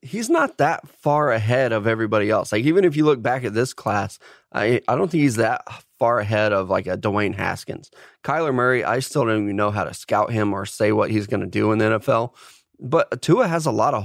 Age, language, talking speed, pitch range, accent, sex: 20-39, English, 245 wpm, 110-130 Hz, American, male